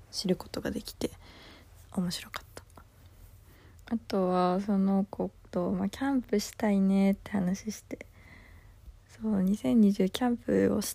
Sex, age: female, 20-39